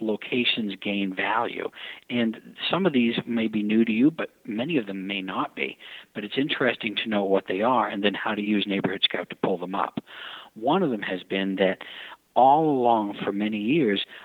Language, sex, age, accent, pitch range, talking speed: English, male, 50-69, American, 95-115 Hz, 205 wpm